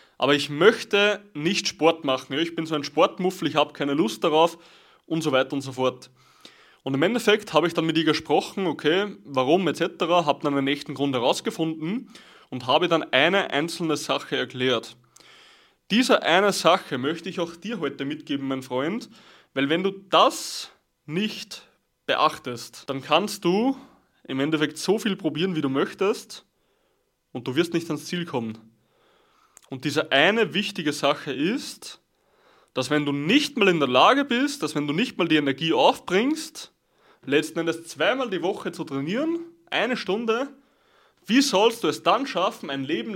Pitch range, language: 145-225 Hz, German